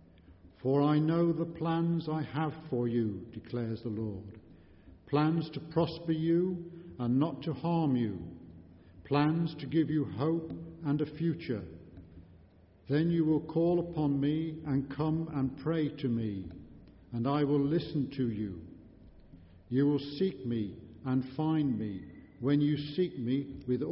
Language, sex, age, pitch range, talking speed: English, male, 50-69, 110-150 Hz, 150 wpm